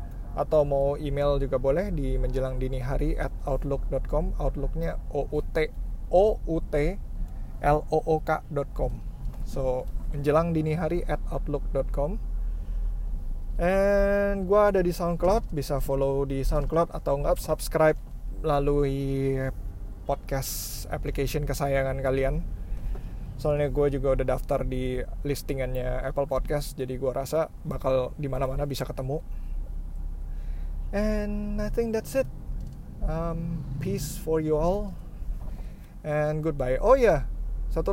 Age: 20-39